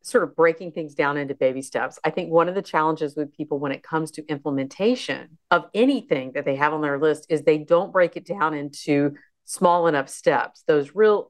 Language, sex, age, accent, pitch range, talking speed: English, female, 40-59, American, 145-170 Hz, 220 wpm